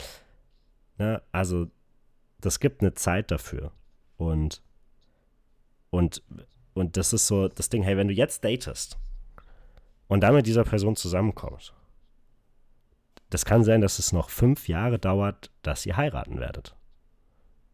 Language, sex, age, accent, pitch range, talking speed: German, male, 30-49, German, 80-105 Hz, 130 wpm